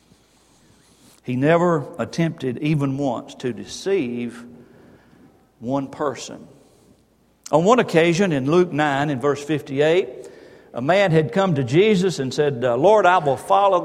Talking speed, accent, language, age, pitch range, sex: 130 wpm, American, English, 60-79, 135-190 Hz, male